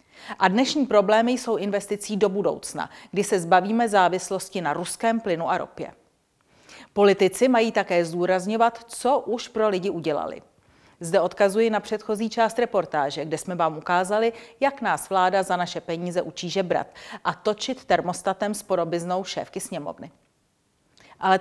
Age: 40-59